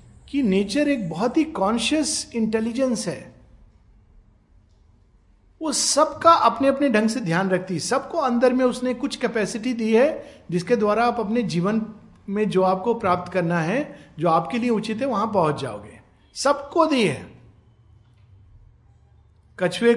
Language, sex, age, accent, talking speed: Hindi, male, 50-69, native, 145 wpm